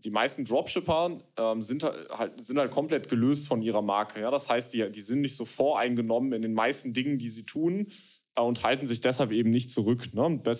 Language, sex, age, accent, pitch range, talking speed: German, male, 20-39, German, 115-135 Hz, 215 wpm